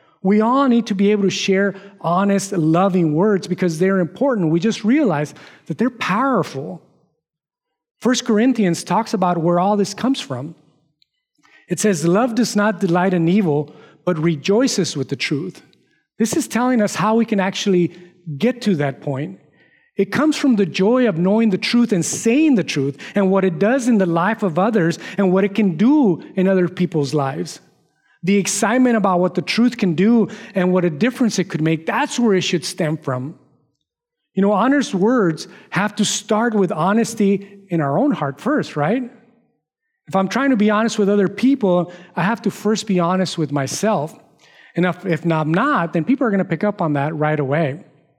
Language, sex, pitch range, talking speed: English, male, 165-220 Hz, 190 wpm